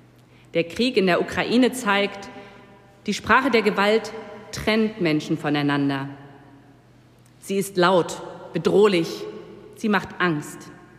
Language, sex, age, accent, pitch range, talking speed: German, female, 40-59, German, 160-225 Hz, 110 wpm